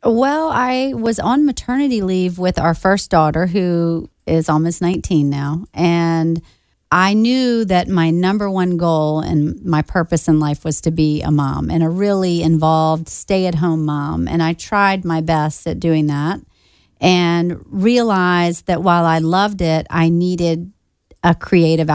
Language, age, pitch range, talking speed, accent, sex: English, 40-59, 160-190 Hz, 160 wpm, American, female